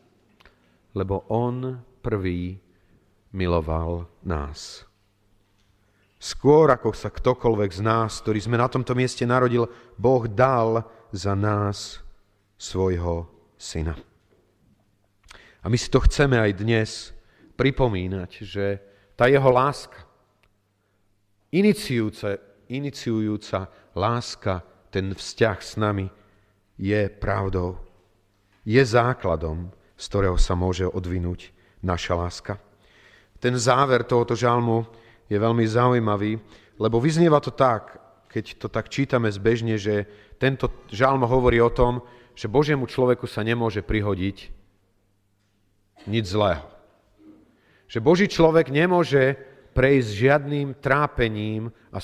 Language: Slovak